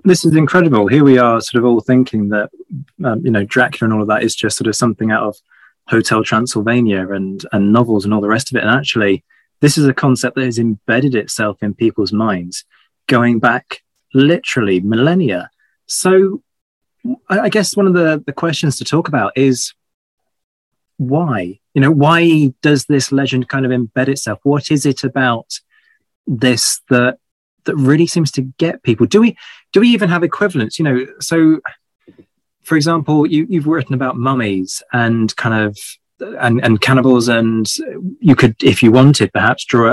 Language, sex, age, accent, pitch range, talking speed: English, male, 20-39, British, 110-150 Hz, 180 wpm